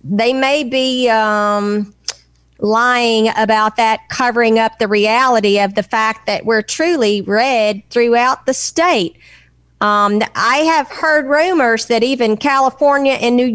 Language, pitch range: English, 210-250 Hz